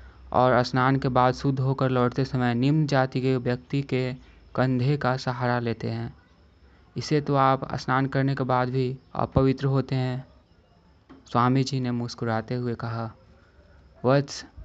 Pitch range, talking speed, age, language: 110-130 Hz, 150 wpm, 20-39, Hindi